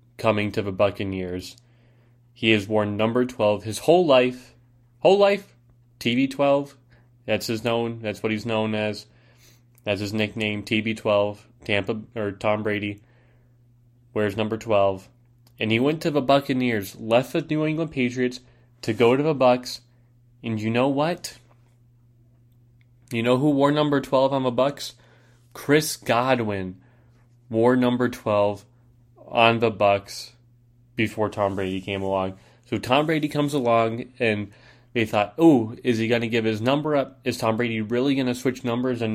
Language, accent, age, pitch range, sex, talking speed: English, American, 20-39, 110-125 Hz, male, 160 wpm